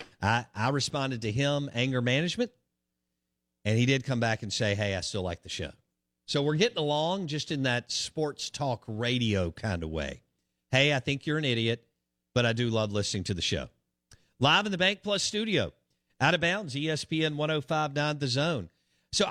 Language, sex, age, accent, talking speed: English, male, 50-69, American, 190 wpm